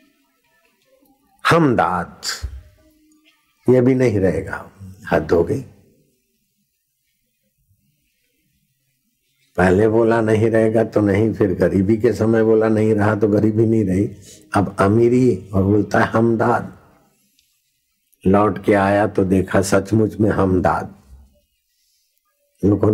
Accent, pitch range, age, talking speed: native, 95-115 Hz, 60-79, 105 wpm